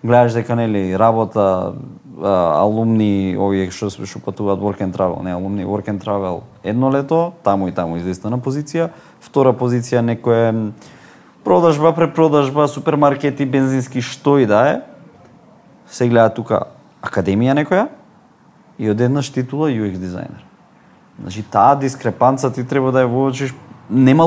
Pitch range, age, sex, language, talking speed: 105-145 Hz, 30-49, male, English, 130 wpm